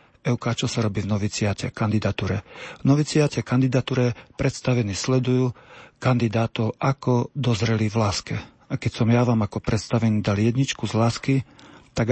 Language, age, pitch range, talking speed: Slovak, 40-59, 105-125 Hz, 145 wpm